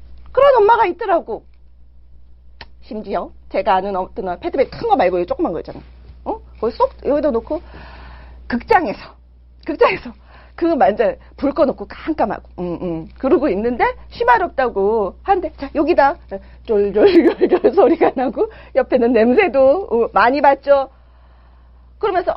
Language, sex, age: Korean, female, 40-59